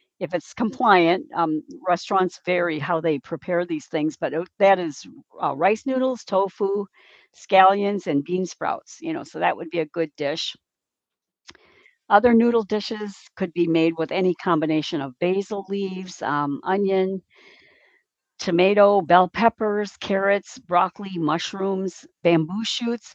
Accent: American